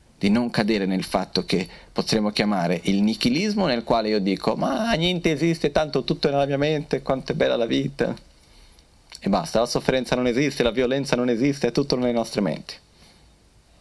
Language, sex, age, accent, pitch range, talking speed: Italian, male, 30-49, native, 85-125 Hz, 185 wpm